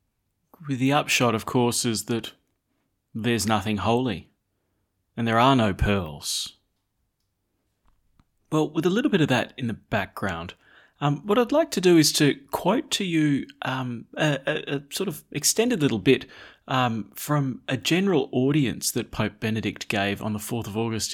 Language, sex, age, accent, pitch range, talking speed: English, male, 30-49, Australian, 105-145 Hz, 165 wpm